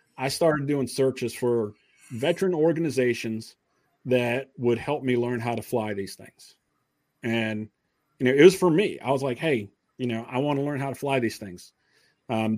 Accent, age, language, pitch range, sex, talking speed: American, 40-59, English, 120-155 Hz, male, 190 wpm